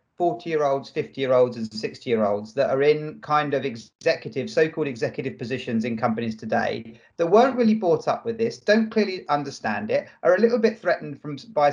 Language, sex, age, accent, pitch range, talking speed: English, male, 40-59, British, 130-175 Hz, 175 wpm